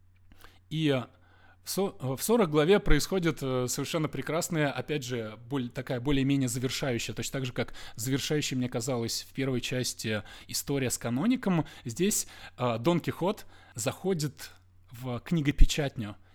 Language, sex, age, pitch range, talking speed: Russian, male, 20-39, 120-155 Hz, 115 wpm